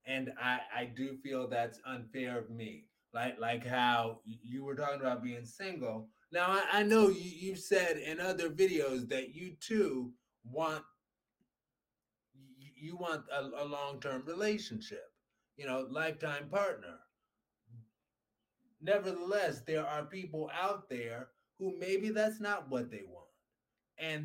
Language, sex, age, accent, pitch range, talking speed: English, male, 30-49, American, 125-165 Hz, 140 wpm